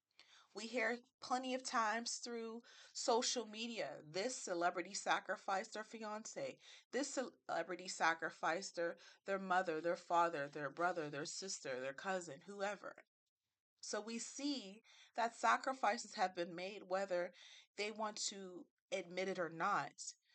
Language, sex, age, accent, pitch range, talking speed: English, female, 30-49, American, 175-230 Hz, 130 wpm